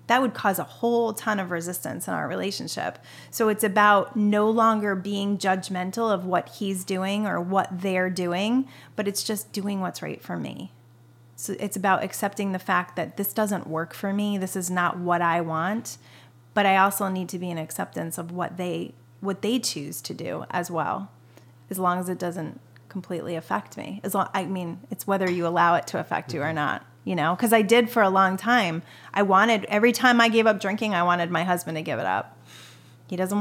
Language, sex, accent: English, female, American